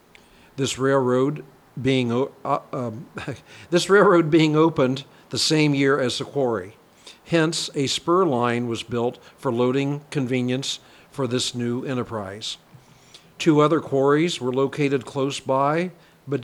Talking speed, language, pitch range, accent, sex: 130 wpm, English, 125-155 Hz, American, male